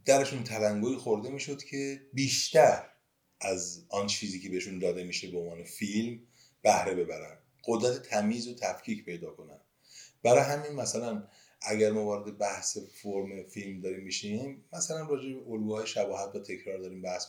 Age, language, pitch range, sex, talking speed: 30-49, Persian, 100-145 Hz, male, 150 wpm